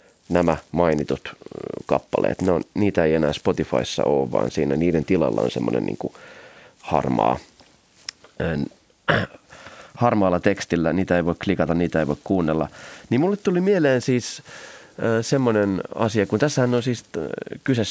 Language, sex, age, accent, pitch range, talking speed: Finnish, male, 30-49, native, 85-130 Hz, 140 wpm